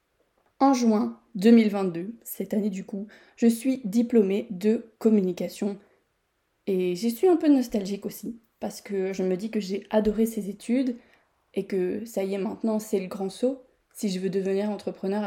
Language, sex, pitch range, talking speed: French, female, 195-225 Hz, 175 wpm